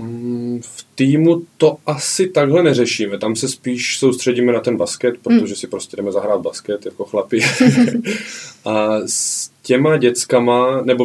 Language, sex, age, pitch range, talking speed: Czech, male, 20-39, 115-135 Hz, 140 wpm